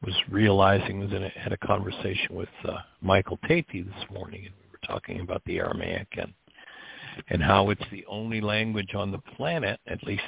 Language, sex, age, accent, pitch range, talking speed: English, male, 60-79, American, 95-110 Hz, 180 wpm